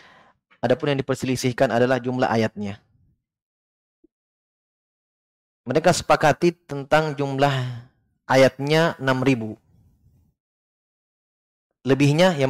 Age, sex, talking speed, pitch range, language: 20-39, male, 65 wpm, 120-145 Hz, Indonesian